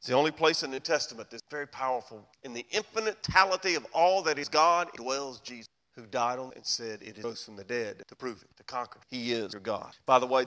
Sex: male